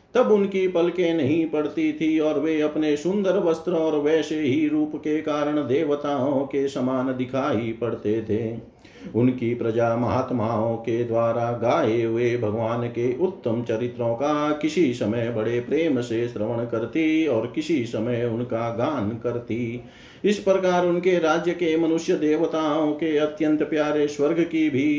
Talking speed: 145 wpm